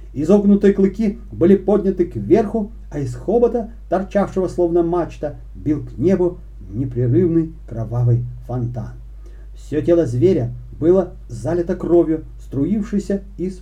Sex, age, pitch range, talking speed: male, 40-59, 120-175 Hz, 110 wpm